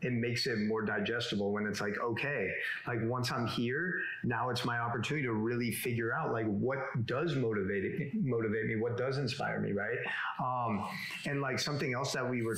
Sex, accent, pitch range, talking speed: male, American, 115-140 Hz, 190 wpm